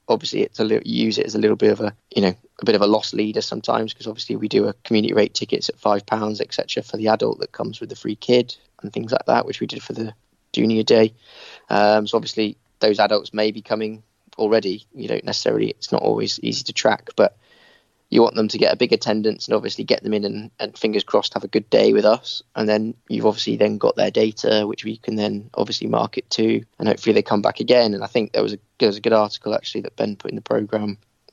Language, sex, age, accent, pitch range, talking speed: English, male, 20-39, British, 105-115 Hz, 255 wpm